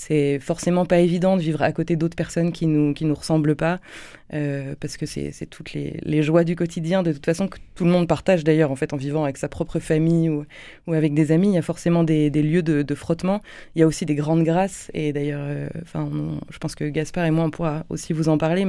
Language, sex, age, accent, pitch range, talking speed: French, female, 20-39, French, 155-175 Hz, 265 wpm